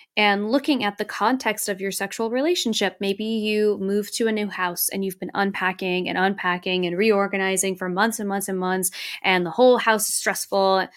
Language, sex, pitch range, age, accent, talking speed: English, female, 190-235 Hz, 10-29, American, 195 wpm